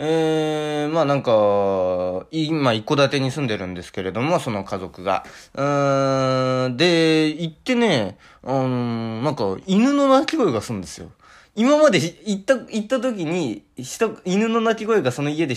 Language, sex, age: Japanese, male, 20-39